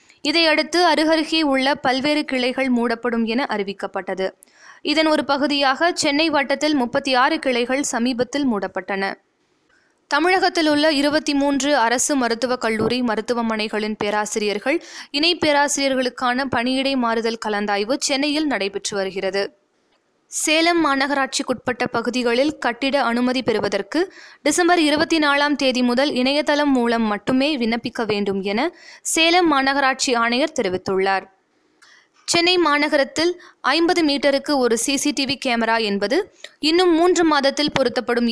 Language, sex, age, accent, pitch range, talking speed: Tamil, female, 20-39, native, 235-300 Hz, 105 wpm